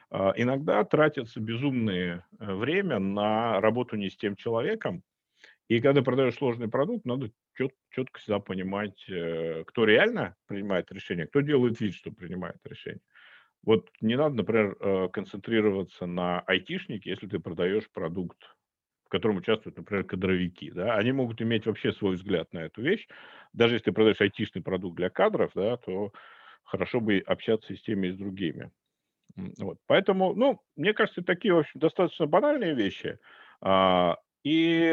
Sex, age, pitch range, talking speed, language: male, 50-69, 95-140 Hz, 145 wpm, Russian